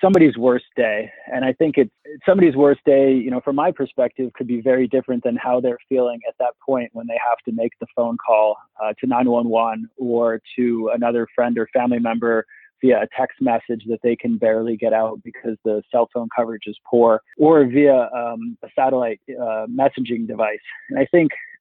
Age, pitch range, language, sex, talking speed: 20-39, 120-135 Hz, English, male, 200 wpm